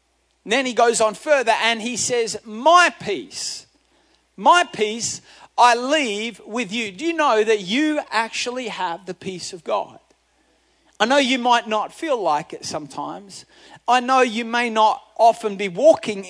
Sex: male